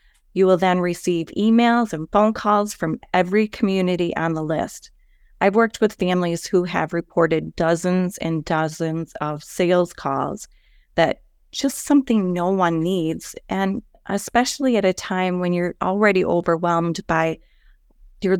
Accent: American